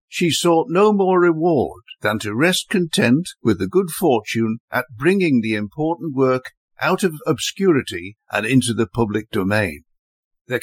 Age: 60-79